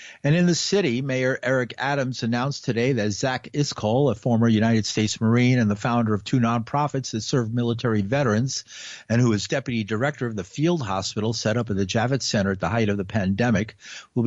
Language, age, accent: English, 50-69, American